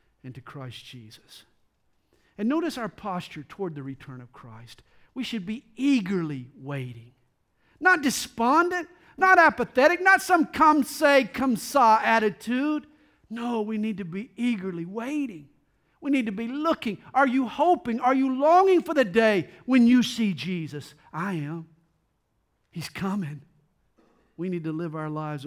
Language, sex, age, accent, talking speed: English, male, 50-69, American, 150 wpm